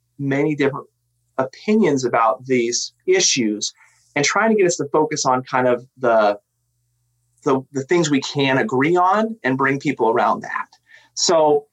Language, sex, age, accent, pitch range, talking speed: English, male, 30-49, American, 120-150 Hz, 155 wpm